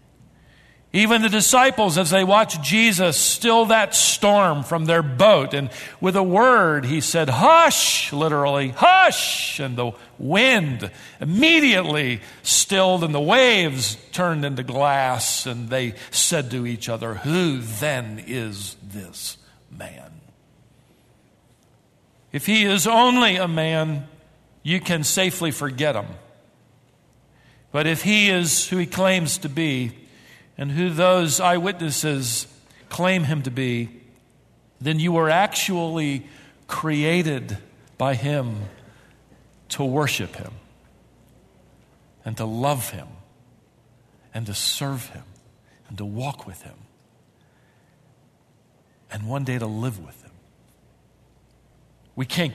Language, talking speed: English, 120 wpm